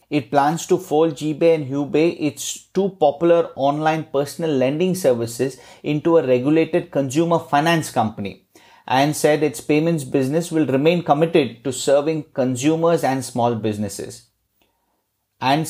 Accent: Indian